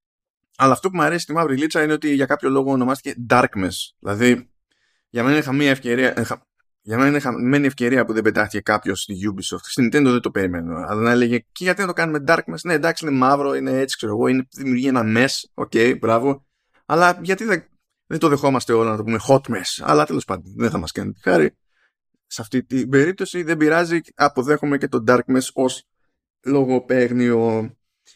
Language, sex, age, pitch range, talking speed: Greek, male, 20-39, 115-145 Hz, 205 wpm